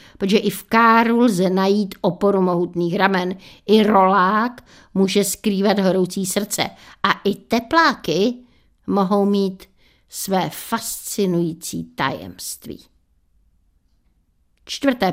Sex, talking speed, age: female, 95 wpm, 50-69